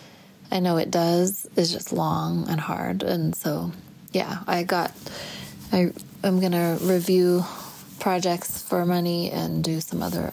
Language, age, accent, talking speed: English, 20-39, American, 145 wpm